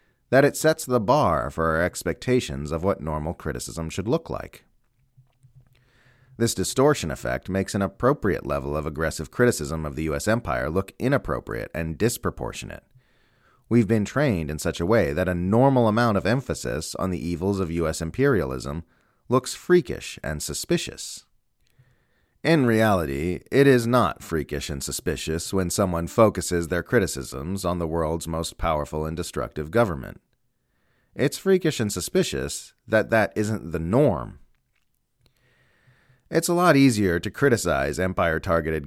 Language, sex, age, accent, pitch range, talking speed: English, male, 30-49, American, 80-125 Hz, 145 wpm